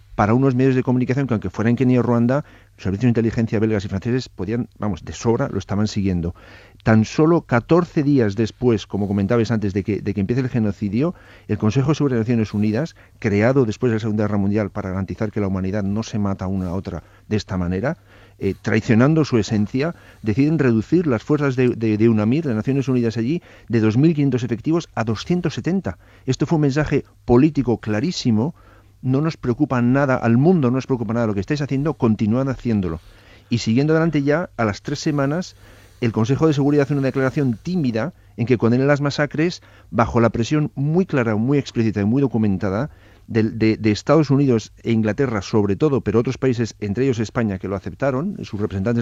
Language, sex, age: Spanish, male, 50-69